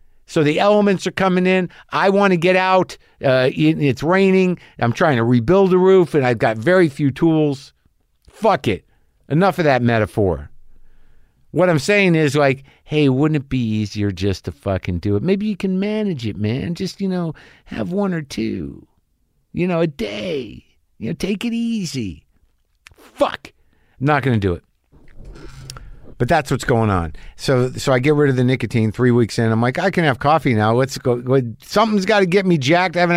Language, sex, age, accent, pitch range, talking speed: English, male, 50-69, American, 110-165 Hz, 195 wpm